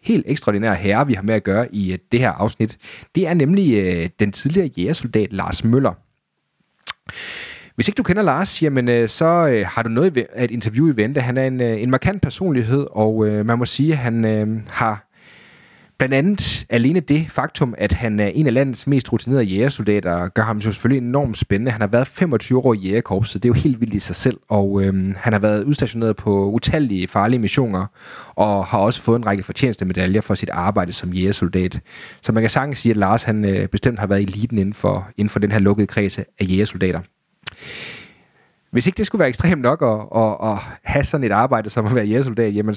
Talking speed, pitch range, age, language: 210 wpm, 100-130 Hz, 30-49, Danish